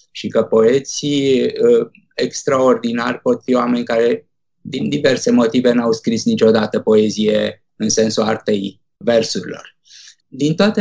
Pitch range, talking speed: 125-185 Hz, 120 wpm